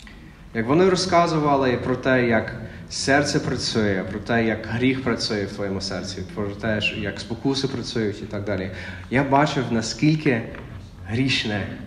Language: Ukrainian